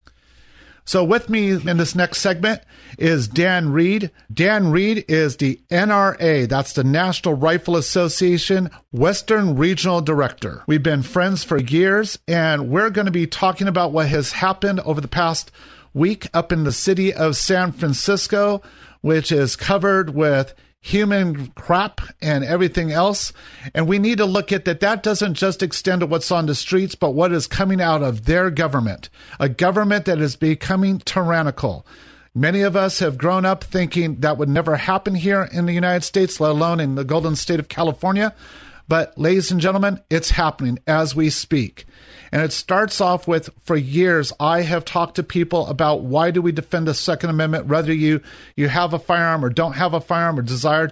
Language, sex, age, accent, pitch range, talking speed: English, male, 50-69, American, 150-185 Hz, 180 wpm